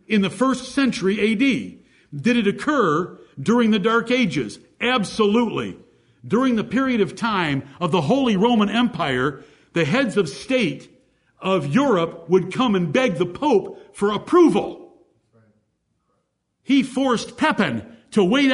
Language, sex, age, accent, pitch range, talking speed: English, male, 50-69, American, 155-245 Hz, 135 wpm